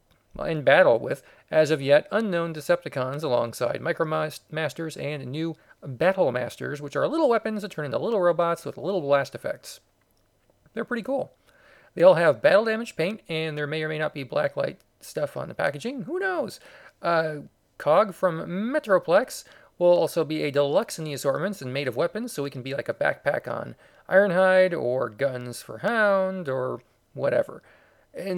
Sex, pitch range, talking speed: male, 135-185 Hz, 170 wpm